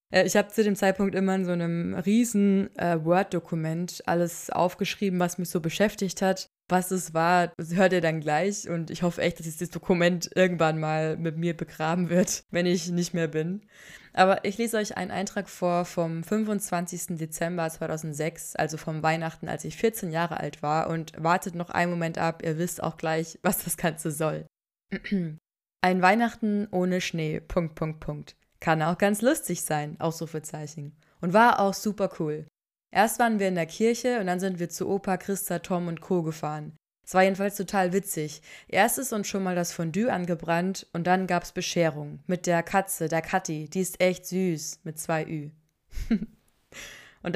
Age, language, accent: 20-39, German, German